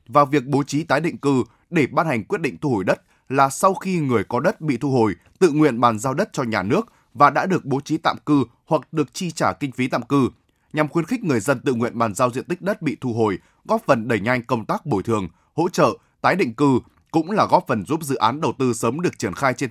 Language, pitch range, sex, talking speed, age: Vietnamese, 120-160 Hz, male, 270 wpm, 20-39